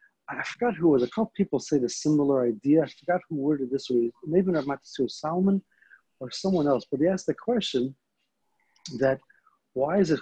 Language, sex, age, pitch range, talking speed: English, male, 40-59, 130-170 Hz, 200 wpm